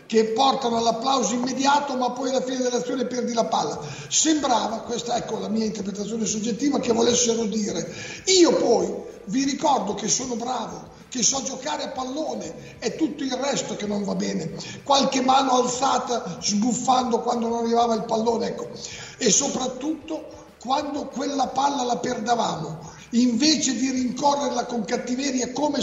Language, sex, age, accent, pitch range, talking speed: Italian, male, 50-69, native, 225-265 Hz, 155 wpm